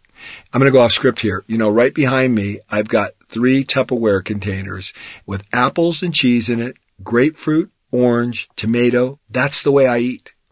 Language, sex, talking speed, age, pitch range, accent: English, male, 175 wpm, 50-69, 110-145 Hz, American